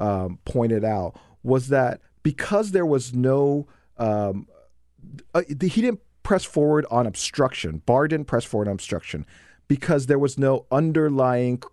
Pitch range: 110-155 Hz